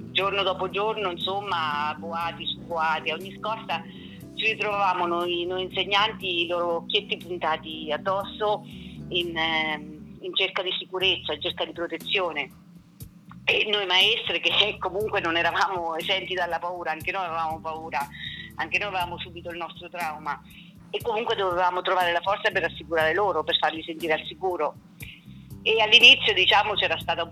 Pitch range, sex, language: 160-195 Hz, female, Italian